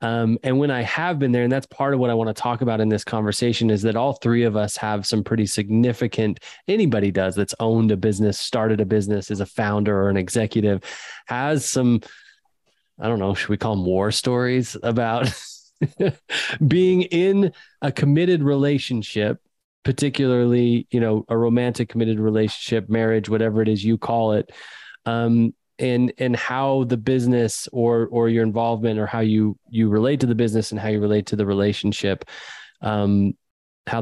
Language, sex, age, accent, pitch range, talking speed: English, male, 20-39, American, 110-125 Hz, 180 wpm